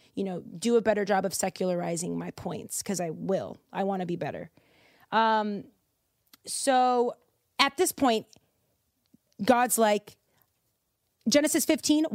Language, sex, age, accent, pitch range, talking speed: English, female, 30-49, American, 200-330 Hz, 135 wpm